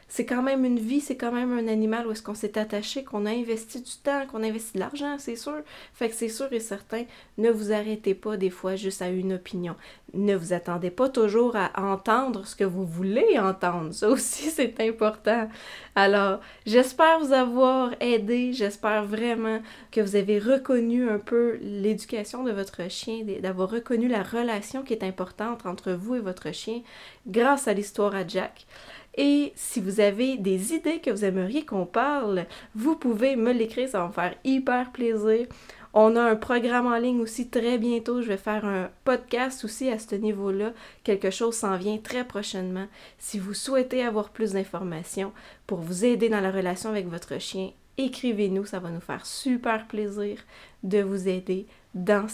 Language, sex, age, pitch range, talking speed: French, female, 20-39, 195-245 Hz, 190 wpm